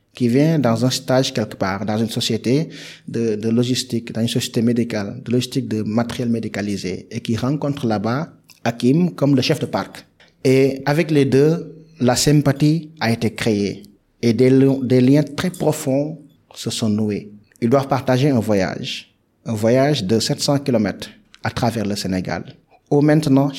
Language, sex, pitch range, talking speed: French, male, 115-145 Hz, 170 wpm